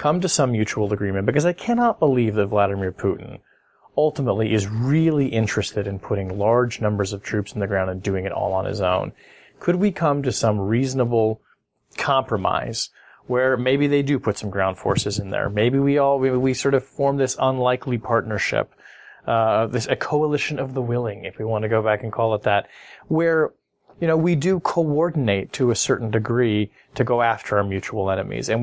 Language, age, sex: English, 30-49, male